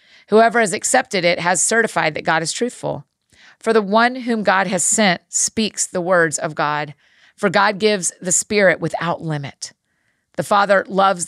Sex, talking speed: female, 170 wpm